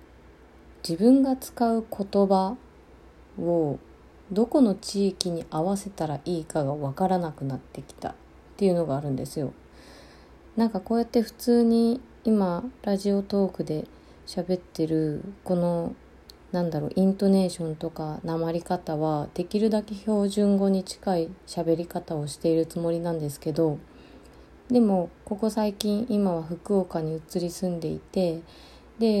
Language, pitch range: Japanese, 155-200 Hz